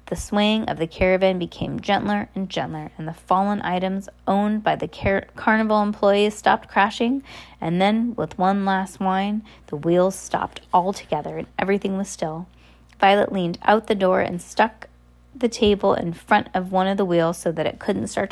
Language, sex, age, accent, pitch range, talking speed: English, female, 20-39, American, 170-215 Hz, 180 wpm